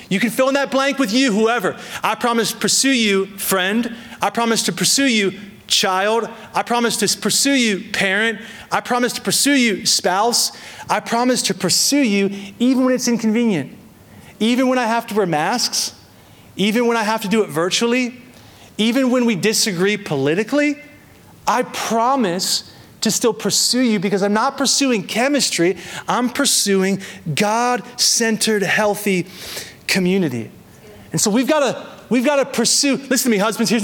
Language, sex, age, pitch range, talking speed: English, male, 30-49, 190-235 Hz, 160 wpm